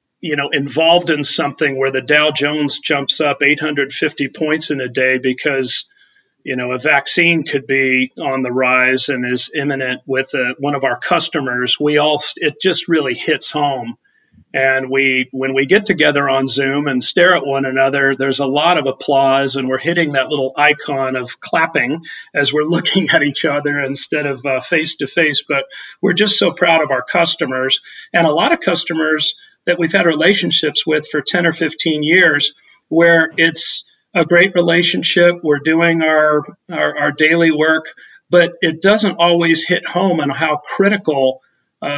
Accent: American